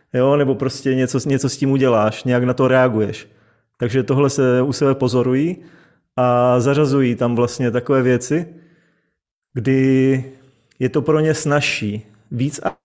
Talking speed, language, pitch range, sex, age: 145 wpm, Czech, 120-145 Hz, male, 30-49